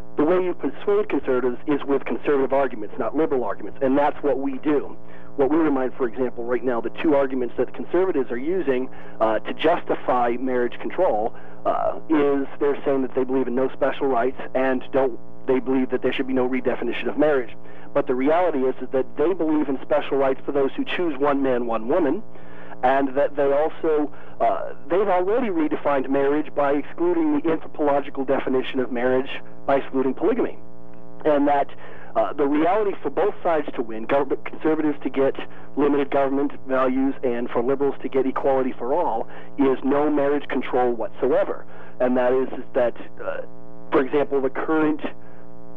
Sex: male